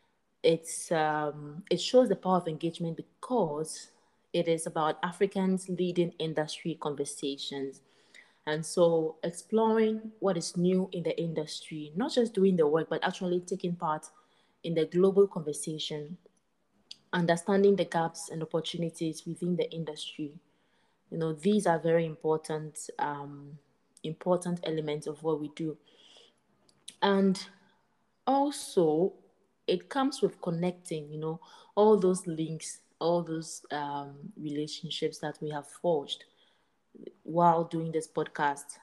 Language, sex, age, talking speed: English, female, 20-39, 125 wpm